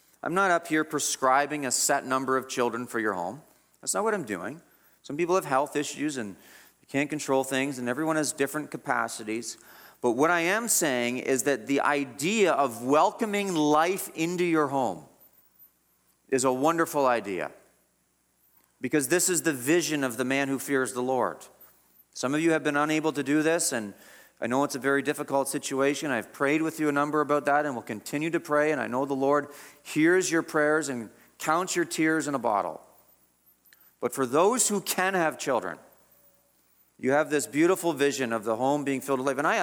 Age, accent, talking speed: 40-59, American, 195 wpm